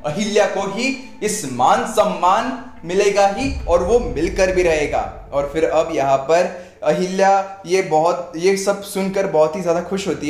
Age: 20-39